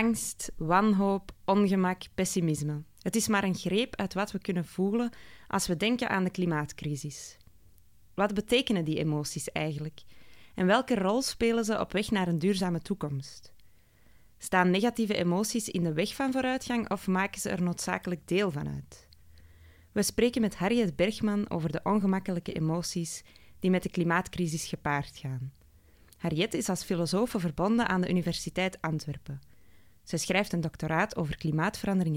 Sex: female